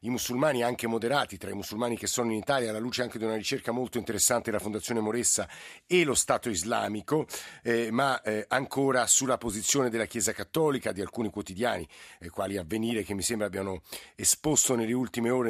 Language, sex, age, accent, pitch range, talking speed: Italian, male, 50-69, native, 105-125 Hz, 190 wpm